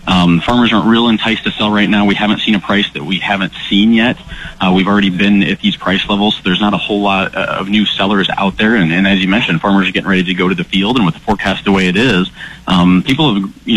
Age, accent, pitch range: 30-49, American, 95-105 Hz